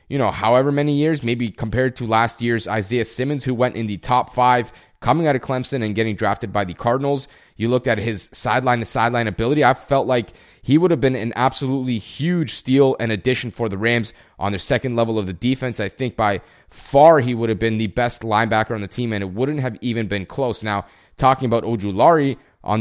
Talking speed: 225 wpm